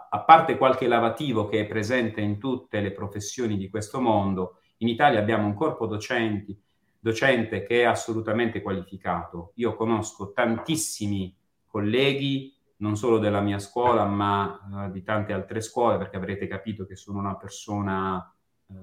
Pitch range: 95-115 Hz